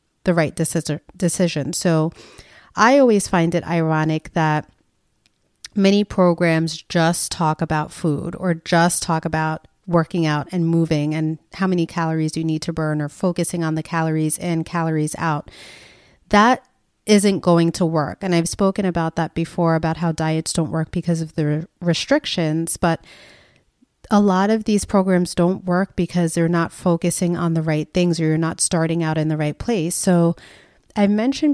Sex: female